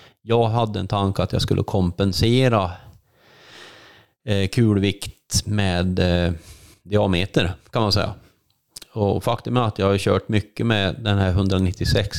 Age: 30-49